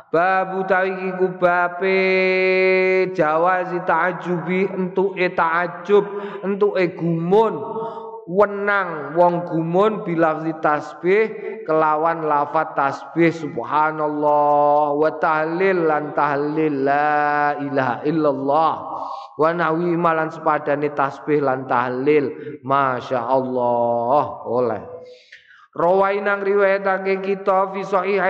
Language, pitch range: Indonesian, 160-190 Hz